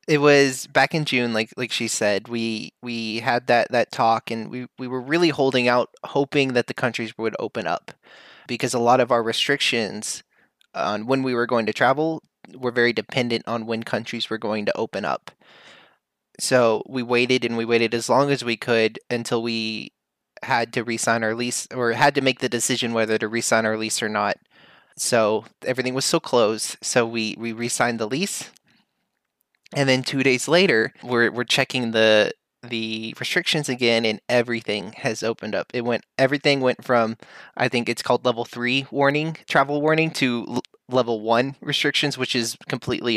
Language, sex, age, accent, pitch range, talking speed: English, male, 20-39, American, 115-135 Hz, 185 wpm